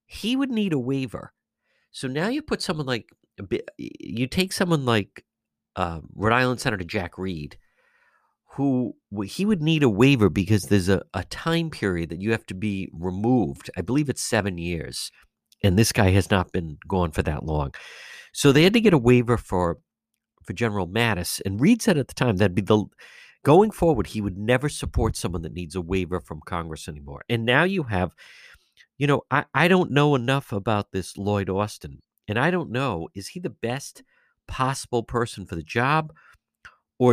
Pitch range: 95-135 Hz